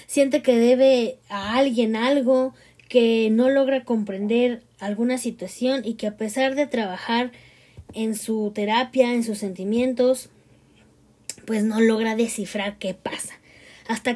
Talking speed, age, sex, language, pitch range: 130 wpm, 20-39, female, Spanish, 220-270 Hz